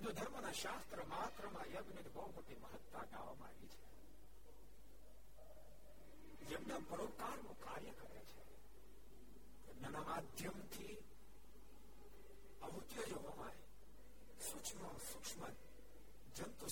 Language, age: Gujarati, 60-79